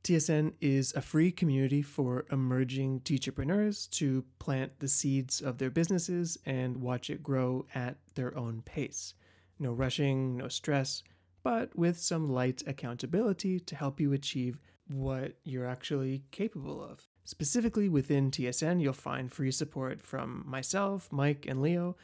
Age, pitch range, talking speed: 30-49, 130-155 Hz, 145 wpm